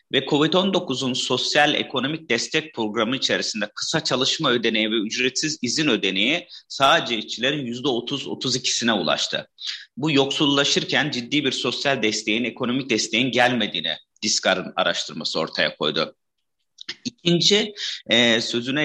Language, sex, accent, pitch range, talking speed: Turkish, male, native, 115-150 Hz, 105 wpm